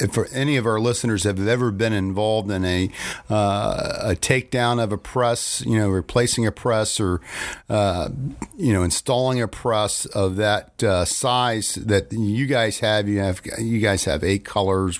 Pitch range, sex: 95-110 Hz, male